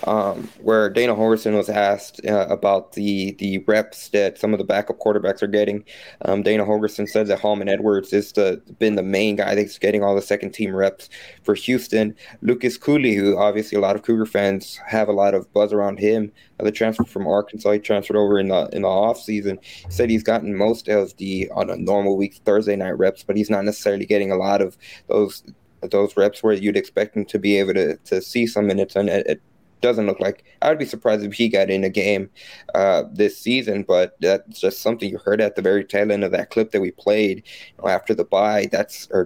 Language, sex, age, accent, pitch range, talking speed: English, male, 20-39, American, 100-110 Hz, 225 wpm